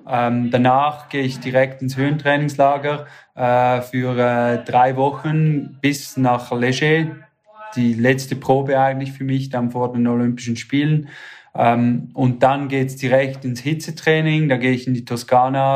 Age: 20-39